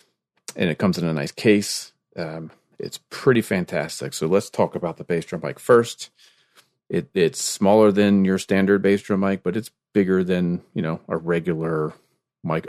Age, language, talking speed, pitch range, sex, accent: 40-59, English, 180 wpm, 80-95 Hz, male, American